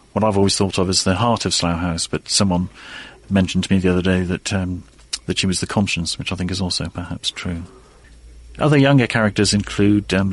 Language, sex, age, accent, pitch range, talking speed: English, male, 40-59, British, 90-105 Hz, 220 wpm